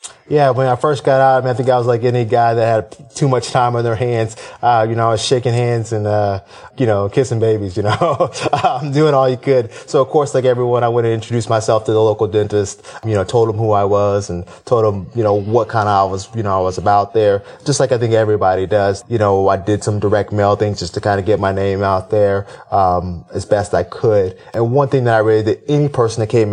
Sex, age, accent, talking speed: male, 20-39, American, 270 wpm